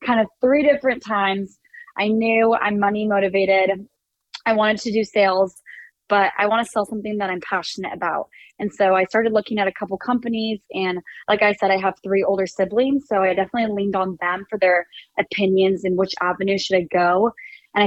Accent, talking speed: American, 200 wpm